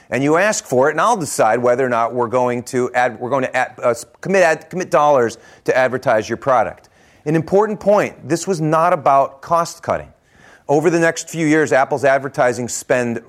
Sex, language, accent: male, English, American